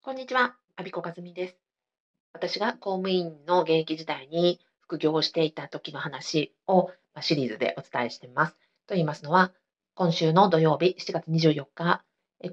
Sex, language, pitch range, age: female, Japanese, 155-190 Hz, 40-59